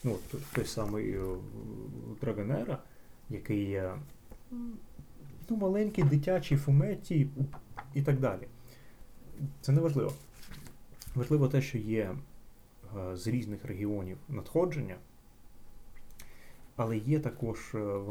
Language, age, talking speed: Ukrainian, 20-39, 95 wpm